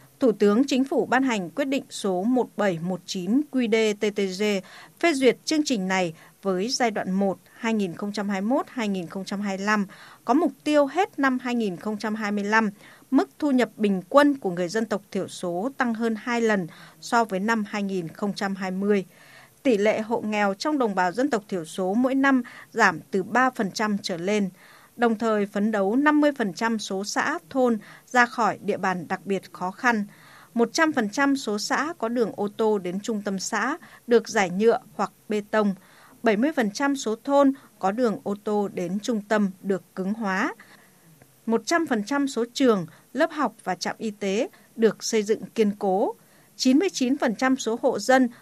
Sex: female